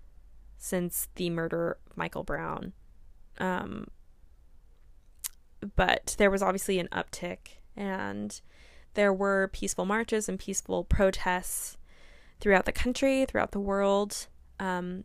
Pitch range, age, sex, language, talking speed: 165-210 Hz, 20-39, female, English, 110 wpm